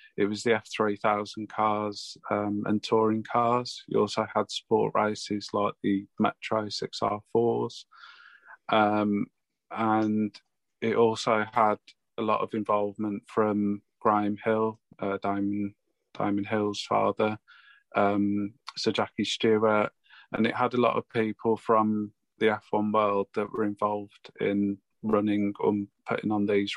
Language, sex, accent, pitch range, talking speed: English, male, British, 105-110 Hz, 130 wpm